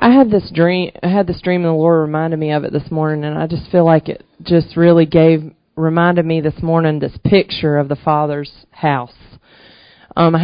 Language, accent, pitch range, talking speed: English, American, 155-190 Hz, 220 wpm